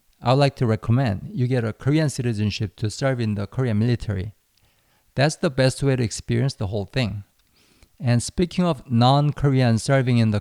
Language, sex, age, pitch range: Korean, male, 50-69, 105-135 Hz